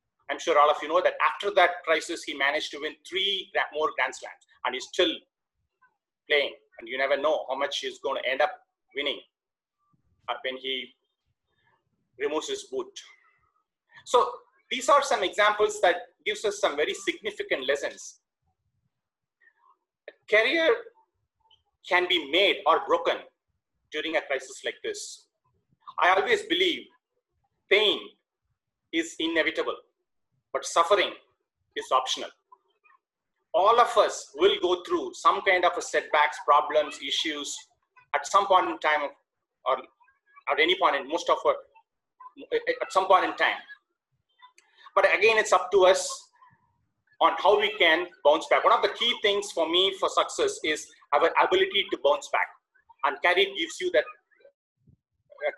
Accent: Indian